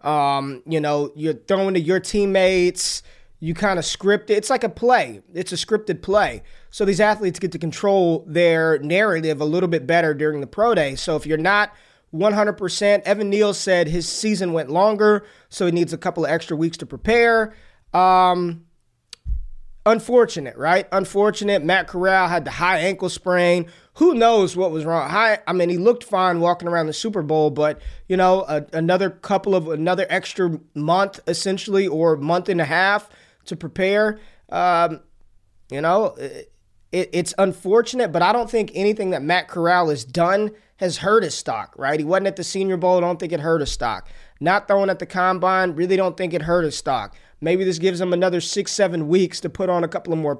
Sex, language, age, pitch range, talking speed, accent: male, English, 20-39, 165-200 Hz, 195 wpm, American